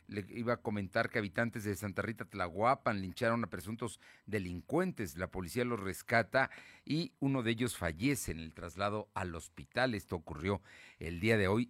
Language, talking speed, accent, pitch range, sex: Spanish, 175 wpm, Mexican, 95-135 Hz, male